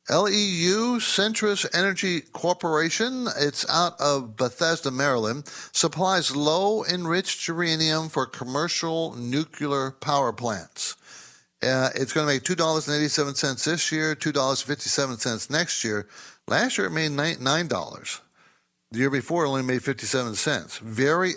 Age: 60-79